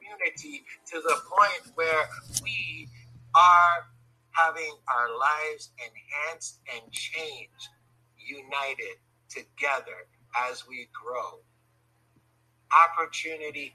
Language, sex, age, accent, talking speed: English, male, 50-69, American, 80 wpm